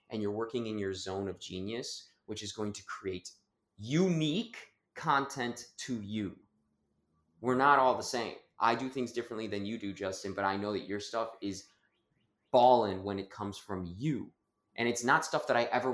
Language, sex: English, male